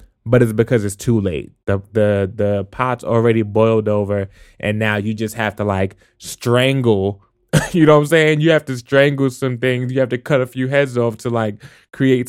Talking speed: 210 wpm